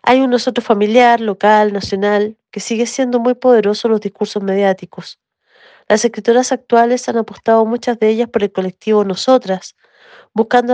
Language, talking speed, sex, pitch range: Spanish, 155 wpm, female, 195-235 Hz